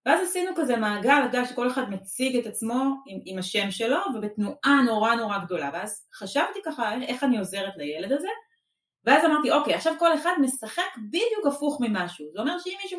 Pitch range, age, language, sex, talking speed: 210-300 Hz, 30-49, Hebrew, female, 185 wpm